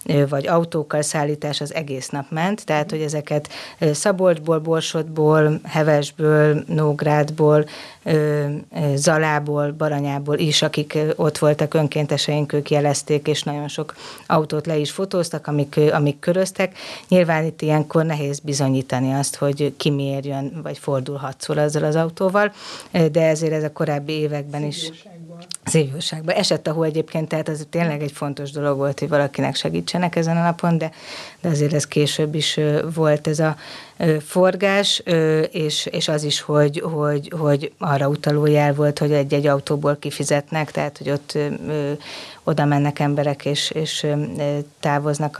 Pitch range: 145-160 Hz